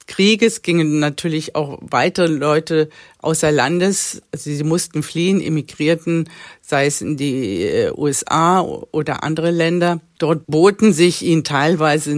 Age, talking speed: 50-69, 125 wpm